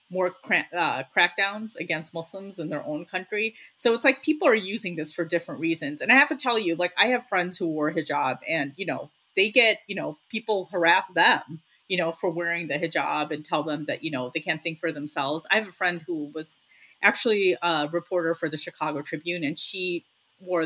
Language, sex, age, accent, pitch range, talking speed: English, female, 30-49, American, 160-210 Hz, 220 wpm